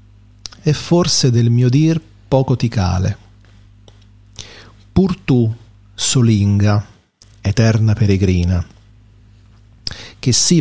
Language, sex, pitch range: Italian, male, 100-115 Hz